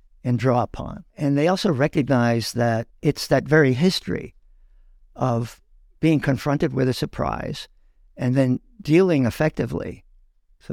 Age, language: 60-79, English